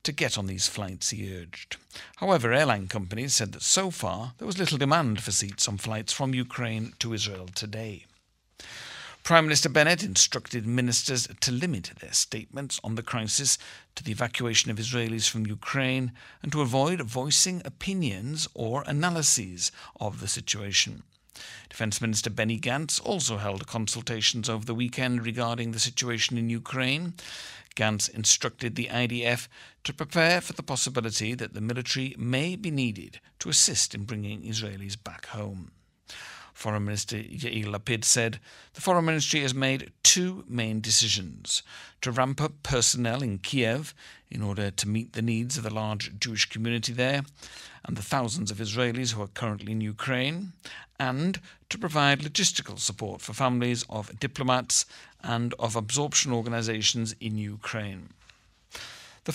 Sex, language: male, English